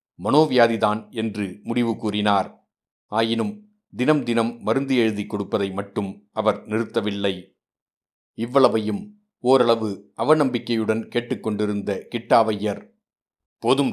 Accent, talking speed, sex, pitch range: native, 80 wpm, male, 100-120 Hz